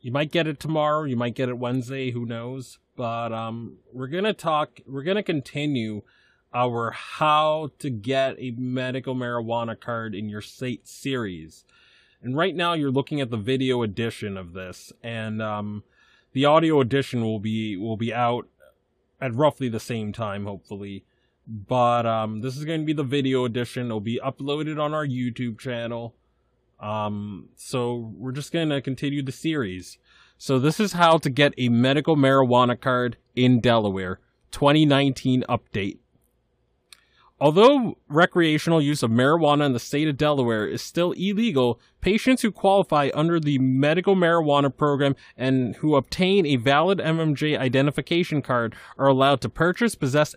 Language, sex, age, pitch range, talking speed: English, male, 20-39, 120-150 Hz, 160 wpm